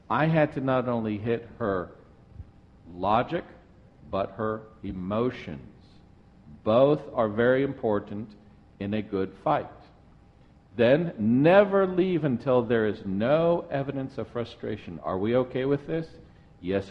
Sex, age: male, 50-69